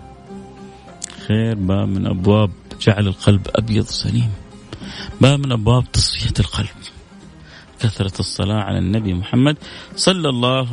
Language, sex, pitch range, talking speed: Arabic, male, 105-130 Hz, 110 wpm